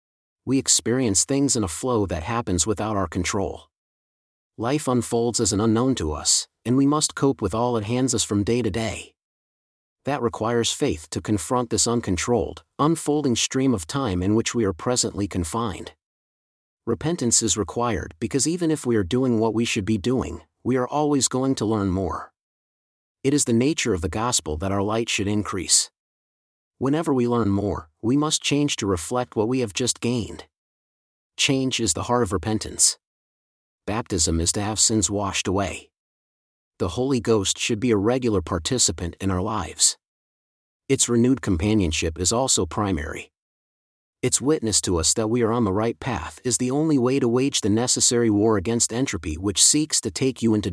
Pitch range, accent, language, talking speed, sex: 95-125 Hz, American, English, 180 wpm, male